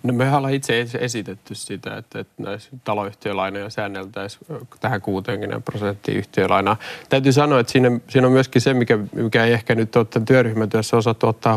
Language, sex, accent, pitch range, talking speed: Finnish, male, native, 105-120 Hz, 160 wpm